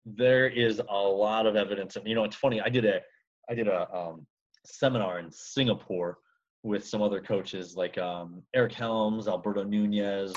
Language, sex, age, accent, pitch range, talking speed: English, male, 30-49, American, 100-120 Hz, 180 wpm